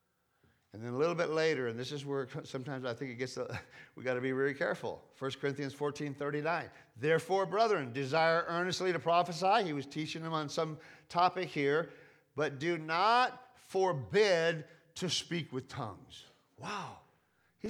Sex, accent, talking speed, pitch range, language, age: male, American, 165 wpm, 135-180 Hz, English, 50-69